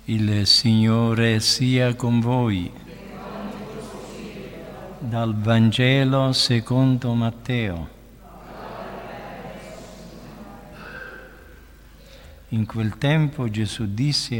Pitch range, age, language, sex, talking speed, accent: 105-130 Hz, 50-69, Italian, male, 60 wpm, native